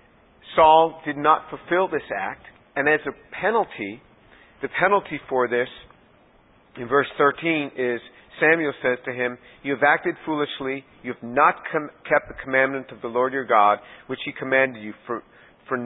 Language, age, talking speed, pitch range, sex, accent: English, 50-69, 165 wpm, 125-155 Hz, male, American